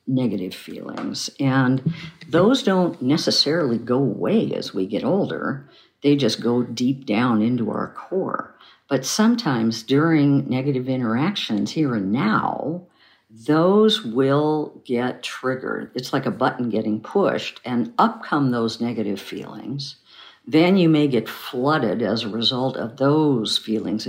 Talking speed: 135 wpm